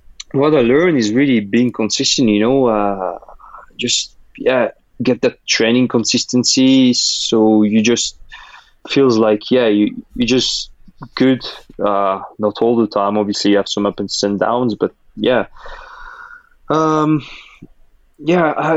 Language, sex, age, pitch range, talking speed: English, male, 20-39, 105-135 Hz, 135 wpm